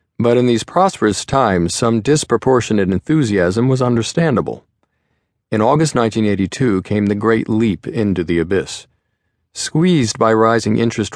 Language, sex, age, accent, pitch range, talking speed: English, male, 40-59, American, 100-120 Hz, 130 wpm